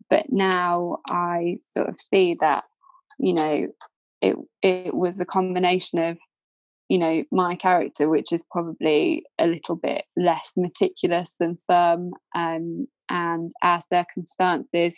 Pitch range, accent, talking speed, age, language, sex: 170-185 Hz, British, 130 wpm, 20-39, English, female